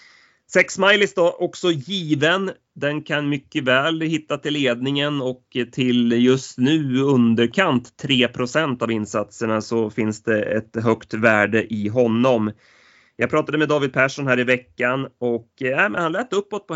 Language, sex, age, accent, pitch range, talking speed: Swedish, male, 30-49, native, 115-145 Hz, 145 wpm